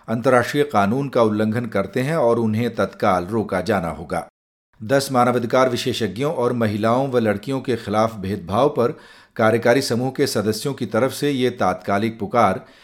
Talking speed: 155 wpm